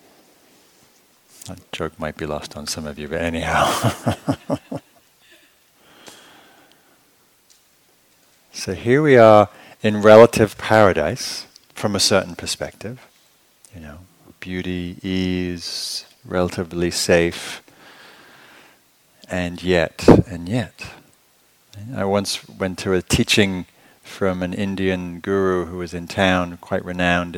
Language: English